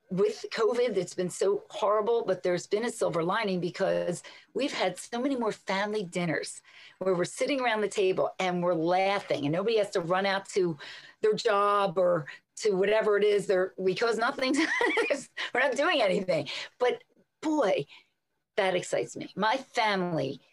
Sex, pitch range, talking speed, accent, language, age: female, 175-230 Hz, 170 wpm, American, English, 40-59